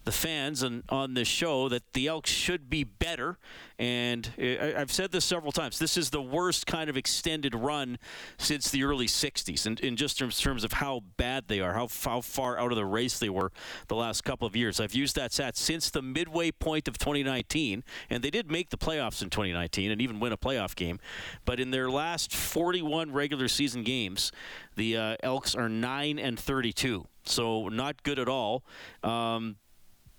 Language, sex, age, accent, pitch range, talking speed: English, male, 40-59, American, 115-140 Hz, 195 wpm